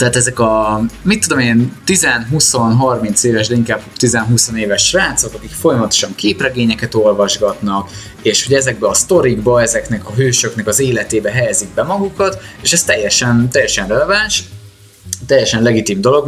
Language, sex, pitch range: Hungarian, male, 105-130 Hz